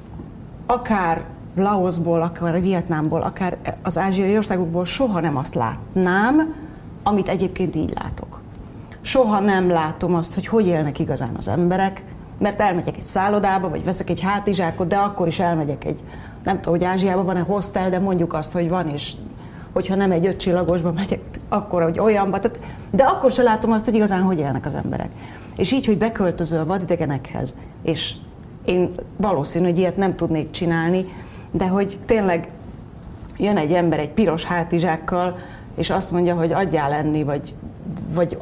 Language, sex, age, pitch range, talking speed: Hungarian, female, 30-49, 165-200 Hz, 160 wpm